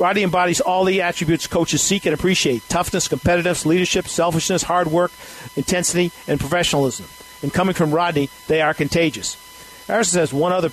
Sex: male